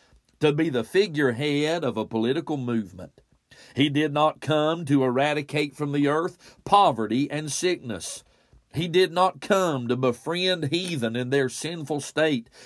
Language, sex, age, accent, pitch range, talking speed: English, male, 40-59, American, 130-165 Hz, 145 wpm